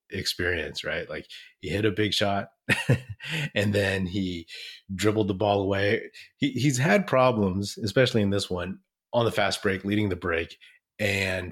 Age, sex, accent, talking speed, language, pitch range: 30-49, male, American, 160 wpm, English, 95-110 Hz